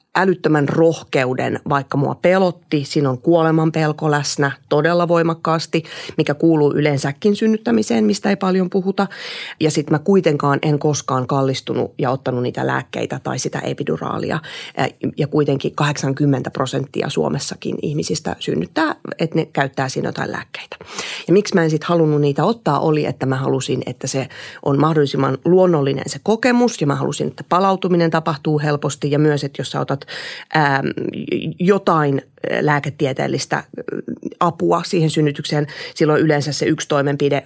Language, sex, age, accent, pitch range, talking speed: Finnish, female, 30-49, native, 145-180 Hz, 145 wpm